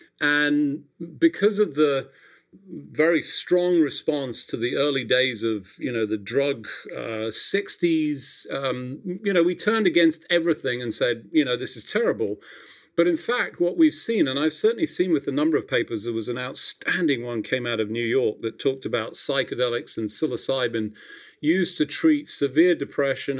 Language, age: English, 40-59